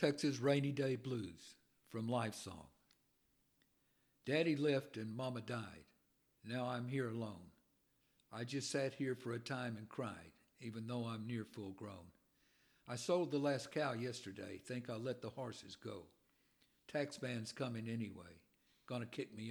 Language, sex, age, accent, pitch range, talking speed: English, male, 60-79, American, 110-135 Hz, 155 wpm